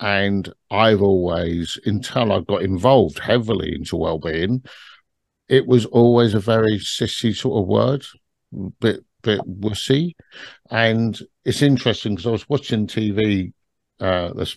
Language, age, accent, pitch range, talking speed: English, 50-69, British, 95-120 Hz, 130 wpm